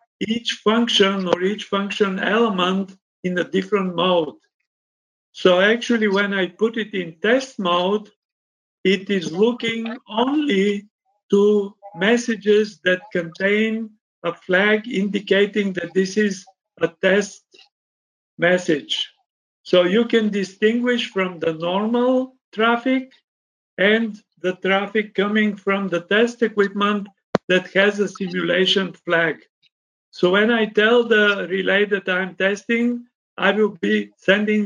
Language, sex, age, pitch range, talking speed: English, male, 50-69, 185-220 Hz, 120 wpm